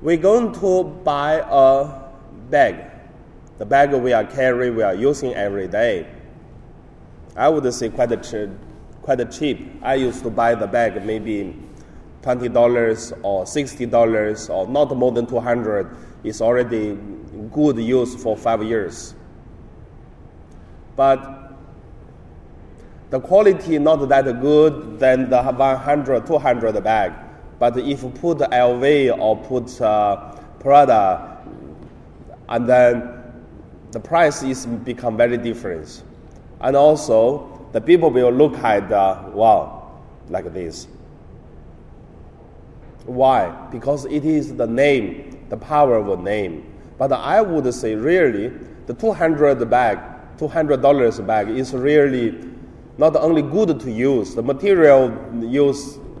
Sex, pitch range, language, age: male, 115-145 Hz, Chinese, 30-49